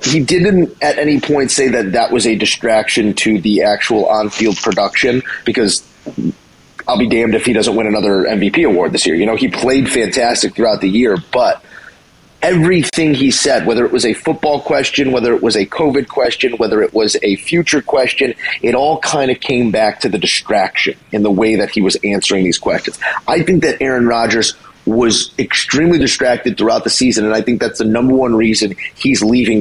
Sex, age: male, 30-49